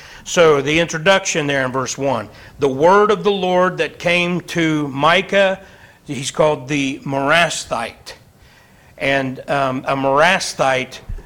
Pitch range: 135-155 Hz